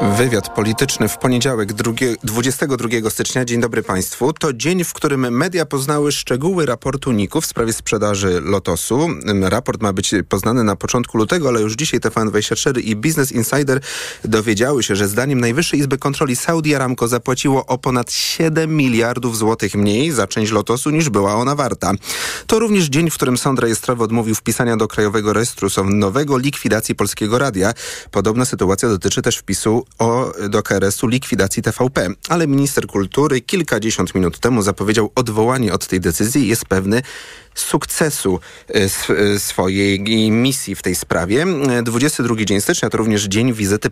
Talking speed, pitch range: 160 wpm, 105-130 Hz